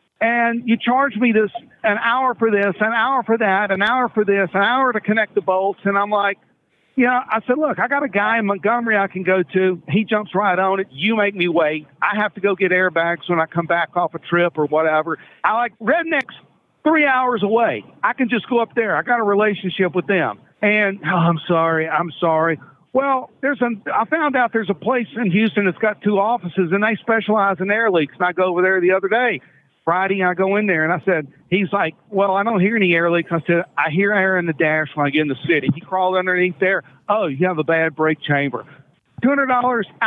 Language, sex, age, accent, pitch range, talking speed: English, male, 50-69, American, 175-230 Hz, 240 wpm